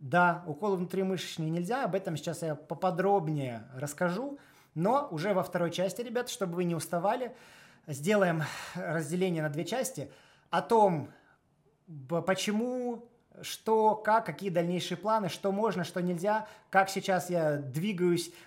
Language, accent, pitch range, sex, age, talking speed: Russian, native, 160-200 Hz, male, 20-39, 135 wpm